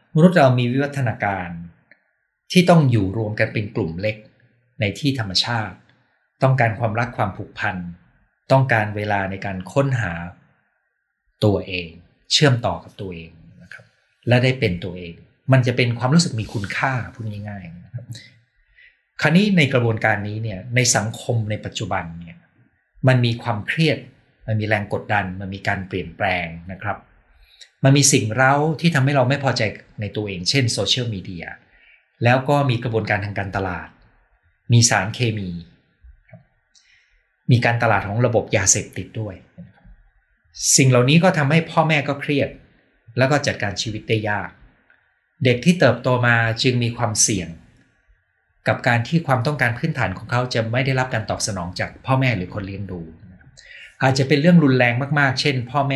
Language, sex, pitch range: Thai, male, 100-130 Hz